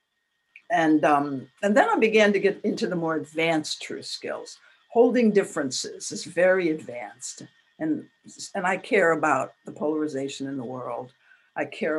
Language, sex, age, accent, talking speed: English, female, 60-79, American, 155 wpm